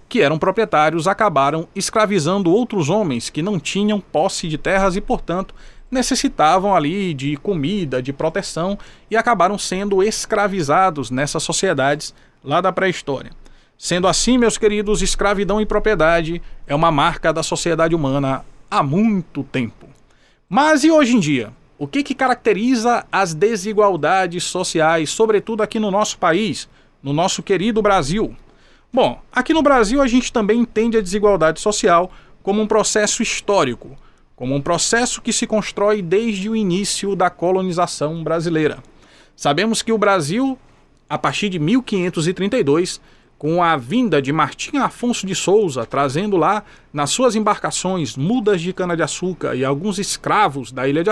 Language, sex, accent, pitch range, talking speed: Portuguese, male, Brazilian, 160-215 Hz, 145 wpm